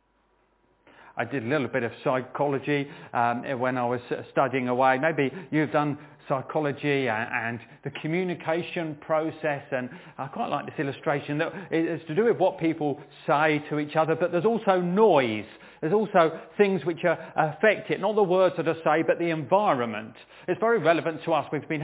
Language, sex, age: English, male, 40-59